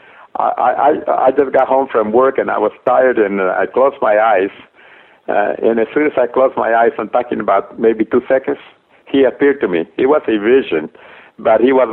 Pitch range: 115-140 Hz